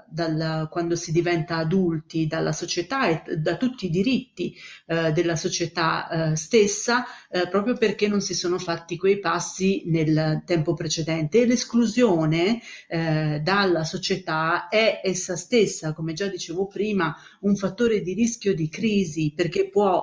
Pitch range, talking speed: 165-210 Hz, 150 wpm